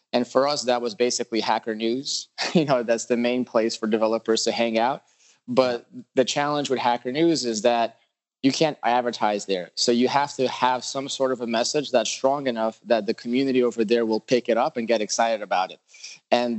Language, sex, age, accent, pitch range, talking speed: English, male, 20-39, American, 115-135 Hz, 215 wpm